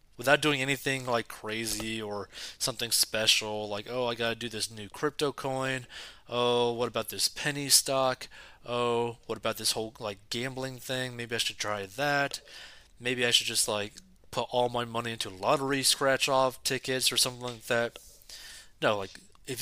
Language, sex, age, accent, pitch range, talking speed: English, male, 20-39, American, 110-130 Hz, 175 wpm